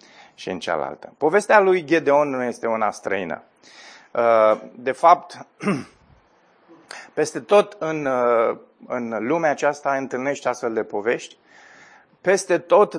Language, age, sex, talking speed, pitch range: Romanian, 30-49, male, 105 wpm, 120-150 Hz